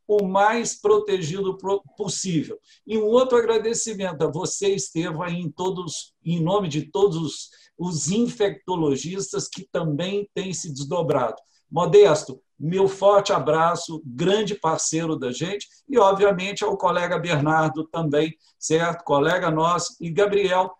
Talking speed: 125 wpm